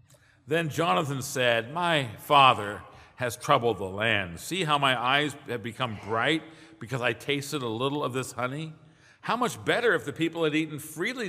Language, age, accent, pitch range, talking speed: English, 50-69, American, 125-165 Hz, 175 wpm